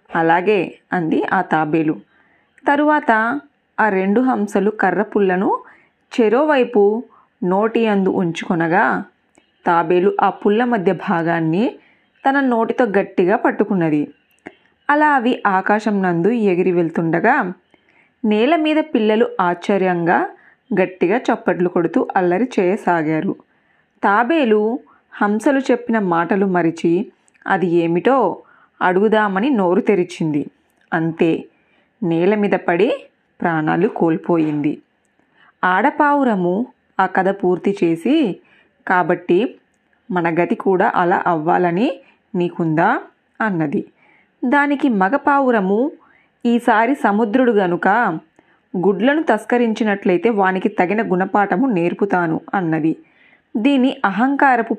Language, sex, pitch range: Telugu, female, 180-240 Hz